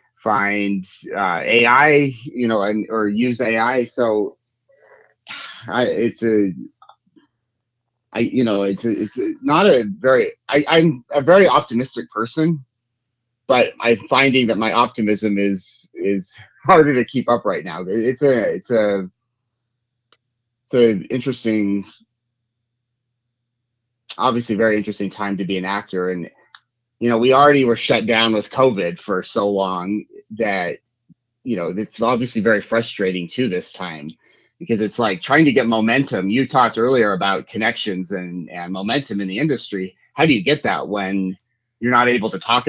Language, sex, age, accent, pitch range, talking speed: English, male, 30-49, American, 105-125 Hz, 155 wpm